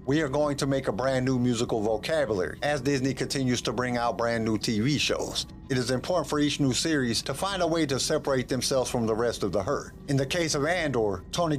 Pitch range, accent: 115-145 Hz, American